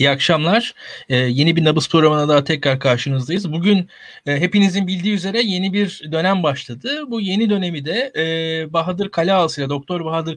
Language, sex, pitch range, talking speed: Turkish, male, 165-210 Hz, 170 wpm